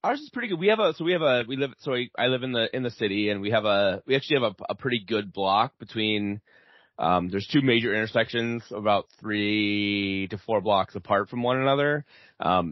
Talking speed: 230 wpm